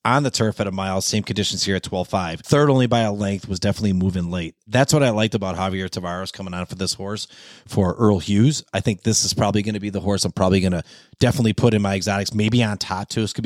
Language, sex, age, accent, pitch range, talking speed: English, male, 30-49, American, 95-130 Hz, 260 wpm